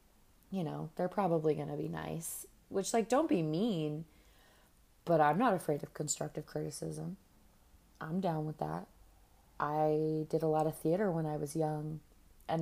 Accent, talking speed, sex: American, 160 wpm, female